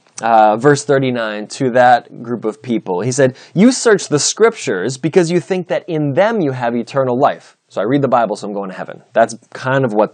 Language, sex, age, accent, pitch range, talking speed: English, male, 20-39, American, 125-175 Hz, 225 wpm